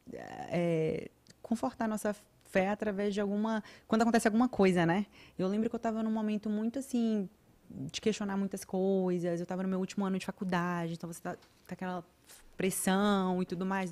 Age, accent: 20-39, Brazilian